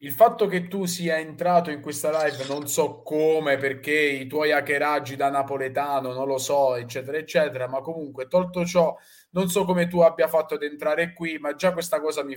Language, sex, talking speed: English, male, 200 wpm